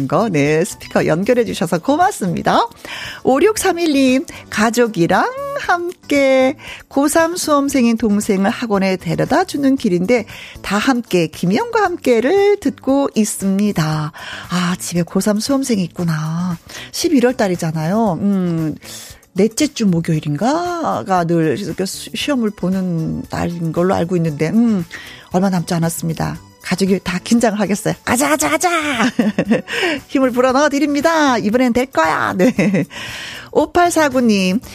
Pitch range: 180-285 Hz